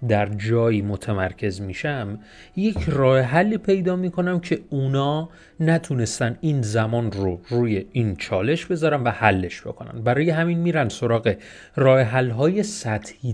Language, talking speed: Persian, 125 wpm